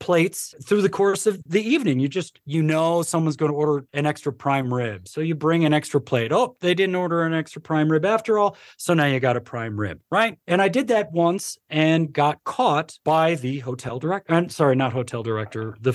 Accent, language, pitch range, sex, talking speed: American, English, 130-185 Hz, male, 230 wpm